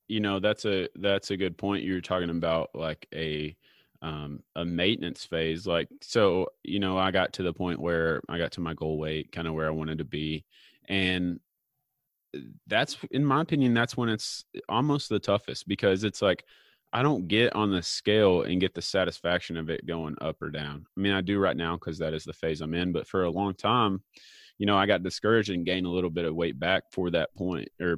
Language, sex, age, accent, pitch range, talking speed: English, male, 30-49, American, 85-105 Hz, 225 wpm